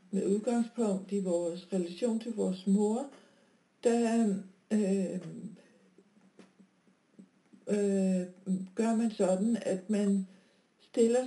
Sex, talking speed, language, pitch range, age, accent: female, 90 wpm, Danish, 195-235 Hz, 60-79, native